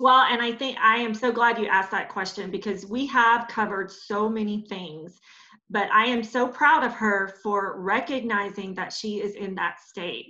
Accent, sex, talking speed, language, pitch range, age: American, female, 200 wpm, English, 200-245 Hz, 30-49